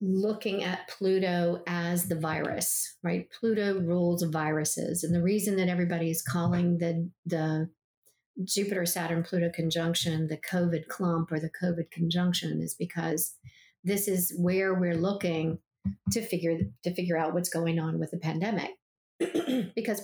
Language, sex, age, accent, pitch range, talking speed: English, female, 40-59, American, 170-195 Hz, 140 wpm